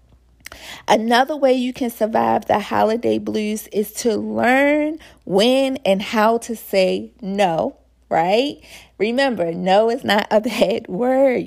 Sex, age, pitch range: female, 40-59, 190-255 Hz